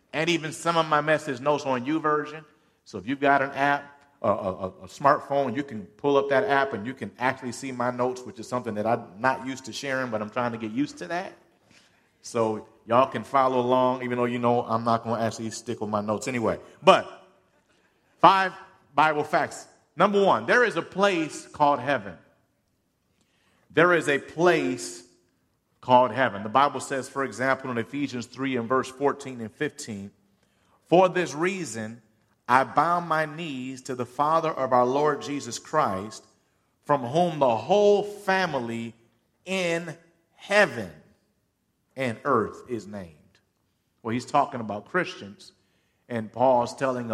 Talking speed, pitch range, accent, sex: 170 wpm, 115-150 Hz, American, male